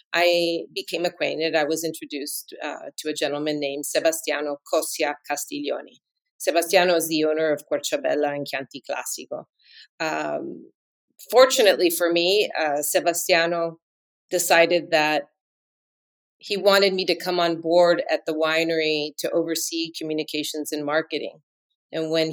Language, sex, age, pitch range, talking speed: English, female, 30-49, 155-180 Hz, 130 wpm